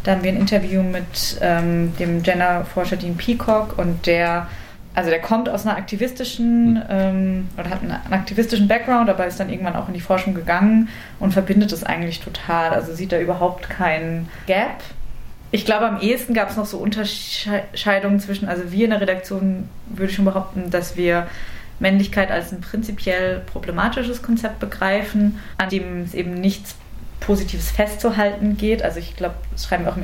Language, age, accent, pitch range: German, 20-39, German, 175-205 Hz